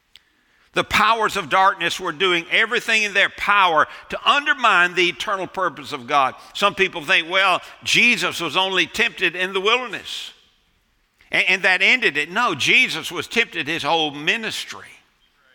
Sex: male